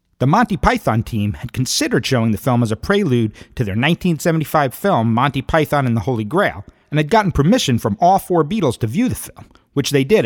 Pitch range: 115-170 Hz